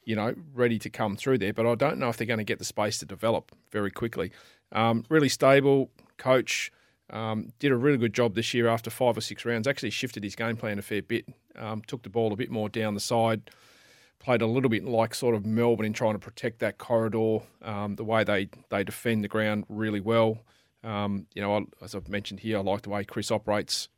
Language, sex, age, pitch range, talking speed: English, male, 30-49, 110-125 Hz, 240 wpm